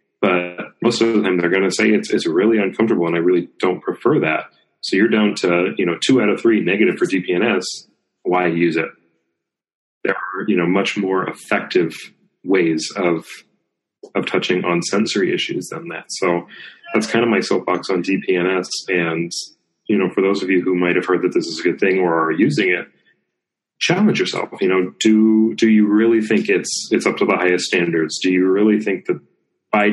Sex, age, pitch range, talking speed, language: male, 30-49, 85-110 Hz, 205 wpm, English